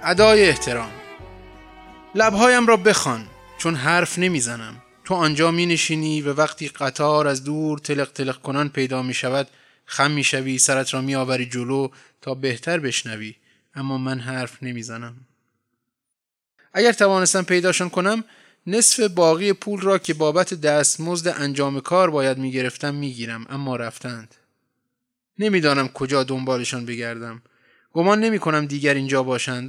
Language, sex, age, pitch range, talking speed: Persian, male, 20-39, 125-160 Hz, 135 wpm